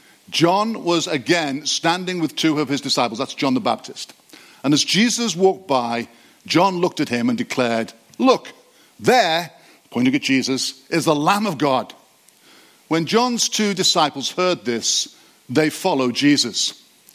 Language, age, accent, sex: English, 50-69, British, male